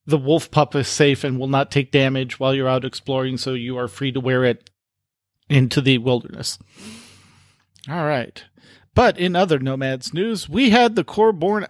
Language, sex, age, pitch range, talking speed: English, male, 40-59, 135-165 Hz, 180 wpm